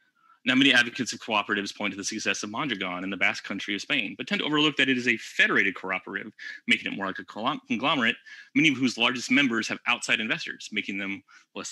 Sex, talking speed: male, 225 wpm